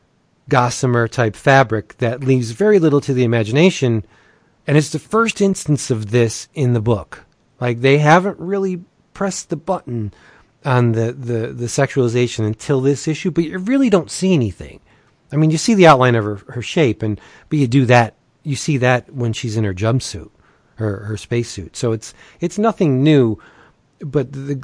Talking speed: 180 wpm